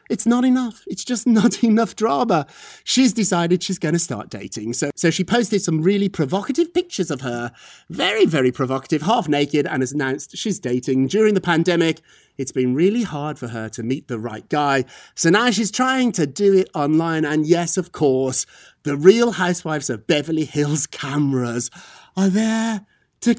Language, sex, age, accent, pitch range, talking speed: English, male, 30-49, British, 135-210 Hz, 180 wpm